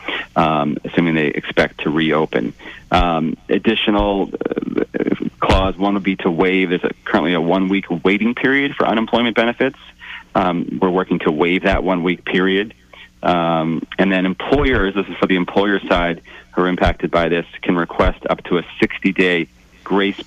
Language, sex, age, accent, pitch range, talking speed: English, male, 40-59, American, 85-100 Hz, 165 wpm